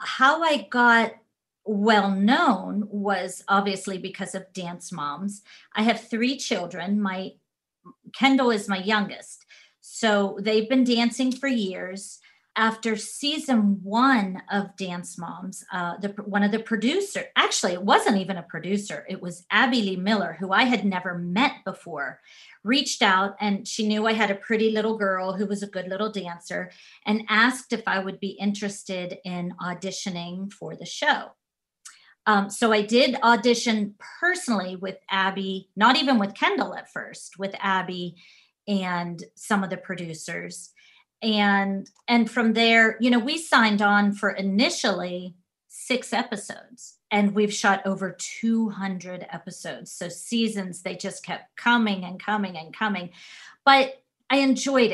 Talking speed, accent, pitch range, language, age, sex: 150 wpm, American, 190-230 Hz, English, 40-59, female